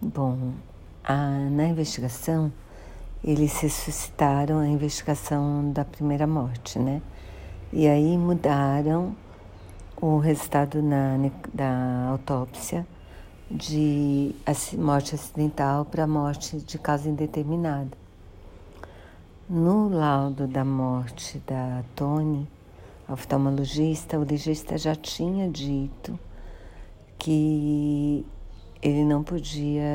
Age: 60-79